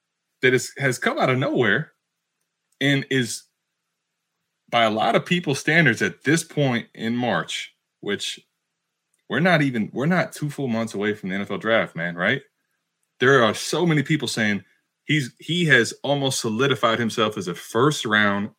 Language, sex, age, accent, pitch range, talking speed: English, male, 20-39, American, 130-160 Hz, 170 wpm